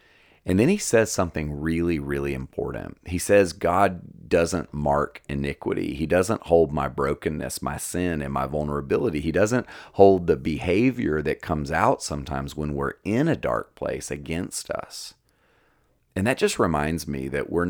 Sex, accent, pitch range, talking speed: male, American, 70-90 Hz, 165 wpm